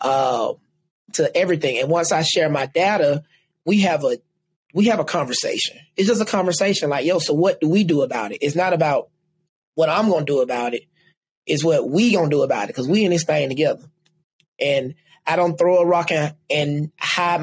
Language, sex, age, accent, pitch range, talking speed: English, male, 20-39, American, 150-185 Hz, 205 wpm